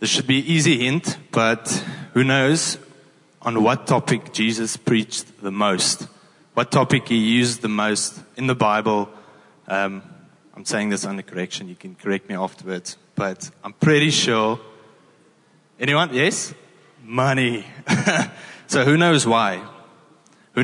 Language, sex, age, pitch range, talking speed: English, male, 20-39, 110-130 Hz, 140 wpm